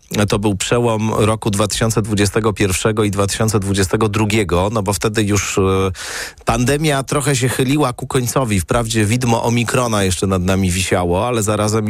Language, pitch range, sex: Polish, 100-120 Hz, male